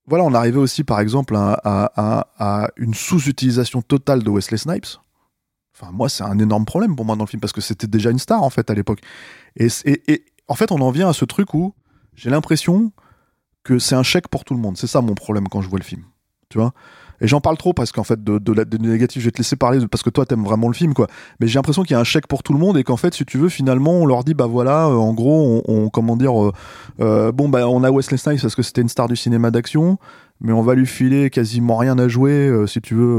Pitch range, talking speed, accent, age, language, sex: 110-140 Hz, 275 wpm, French, 20-39, French, male